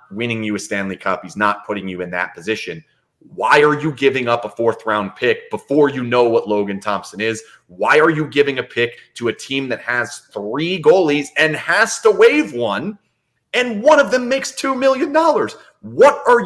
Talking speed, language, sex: 205 wpm, English, male